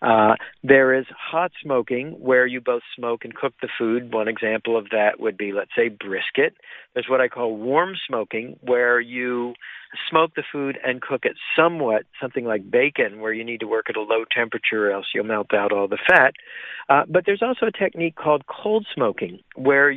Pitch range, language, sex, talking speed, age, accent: 115-145 Hz, English, male, 205 wpm, 50-69, American